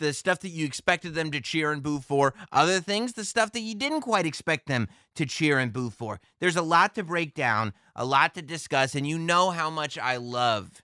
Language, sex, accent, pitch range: English, male, American, 120-170 Hz